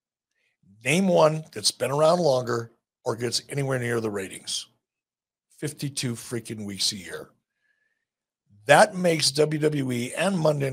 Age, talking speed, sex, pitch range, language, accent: 60-79, 125 wpm, male, 115-155 Hz, English, American